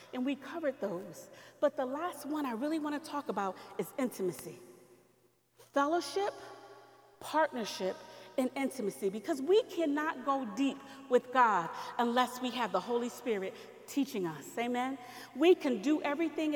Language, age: English, 40-59